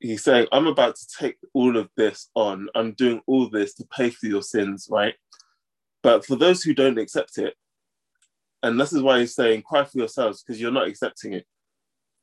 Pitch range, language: 115-190 Hz, English